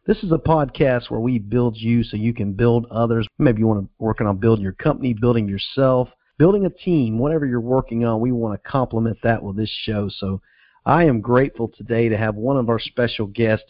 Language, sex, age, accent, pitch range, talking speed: English, male, 50-69, American, 110-130 Hz, 225 wpm